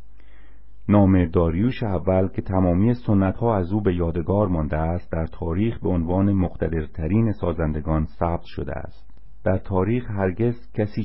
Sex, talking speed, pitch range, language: male, 140 wpm, 80-105 Hz, Persian